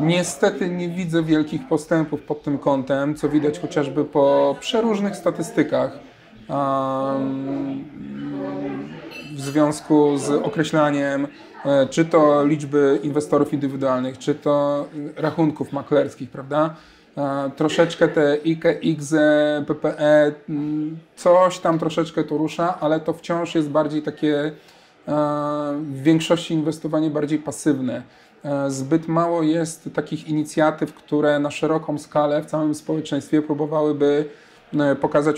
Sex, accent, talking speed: male, native, 105 wpm